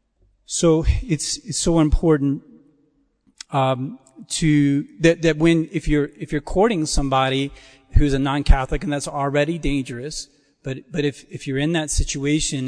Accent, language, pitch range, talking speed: American, English, 135-155 Hz, 145 wpm